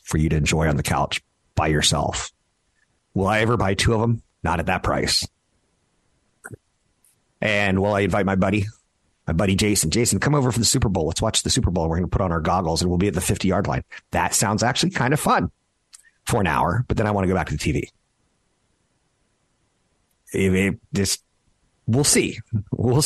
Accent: American